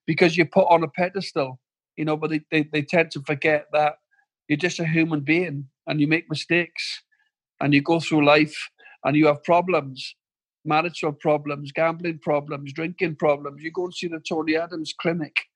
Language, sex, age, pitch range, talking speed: English, male, 50-69, 145-170 Hz, 185 wpm